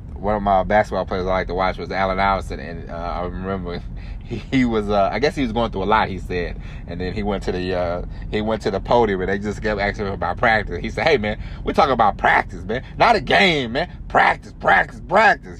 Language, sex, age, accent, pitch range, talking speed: English, male, 30-49, American, 85-110 Hz, 255 wpm